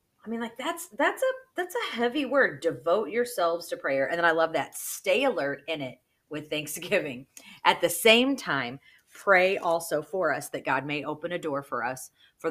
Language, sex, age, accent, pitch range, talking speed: English, female, 40-59, American, 140-175 Hz, 200 wpm